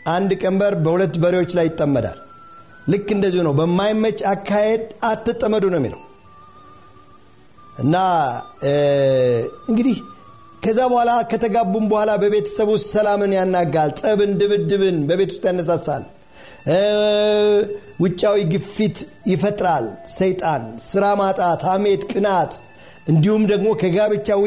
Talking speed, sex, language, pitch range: 95 wpm, male, Amharic, 165-215 Hz